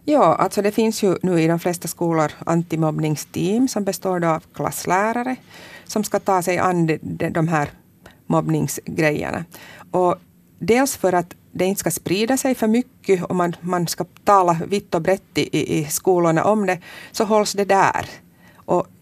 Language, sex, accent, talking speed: Swedish, female, Finnish, 160 wpm